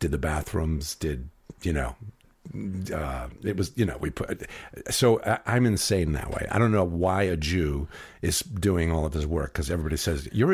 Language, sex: English, male